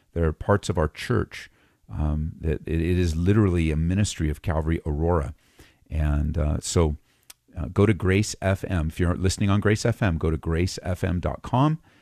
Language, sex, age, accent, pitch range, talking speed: English, male, 40-59, American, 80-105 Hz, 165 wpm